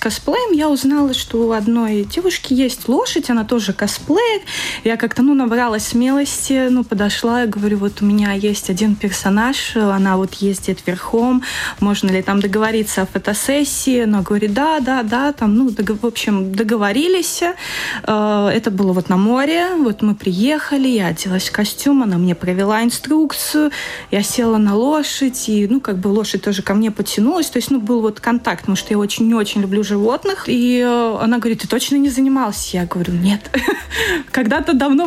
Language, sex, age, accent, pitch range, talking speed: Russian, female, 20-39, native, 205-260 Hz, 175 wpm